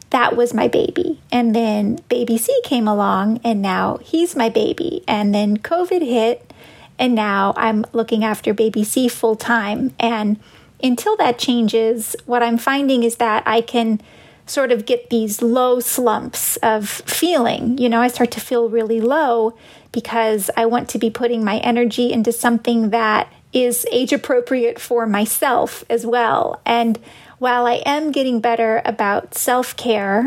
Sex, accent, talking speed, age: female, American, 160 wpm, 30-49